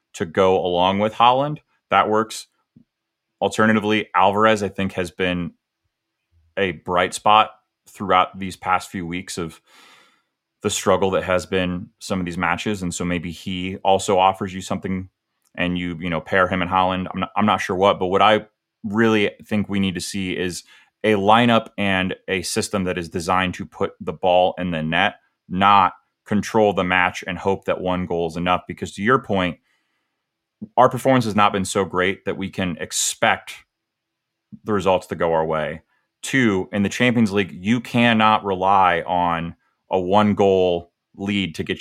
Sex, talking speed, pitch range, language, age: male, 180 wpm, 90-105 Hz, English, 30-49